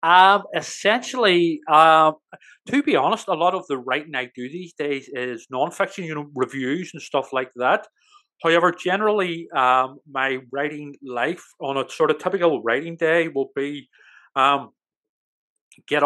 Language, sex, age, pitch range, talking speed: English, male, 30-49, 135-165 Hz, 155 wpm